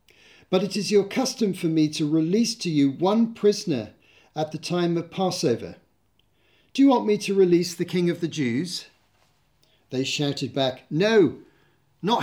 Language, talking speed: English, 165 wpm